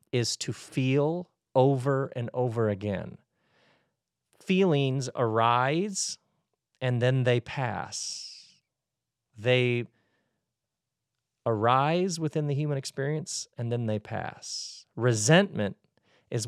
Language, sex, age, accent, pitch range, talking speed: English, male, 40-59, American, 115-150 Hz, 90 wpm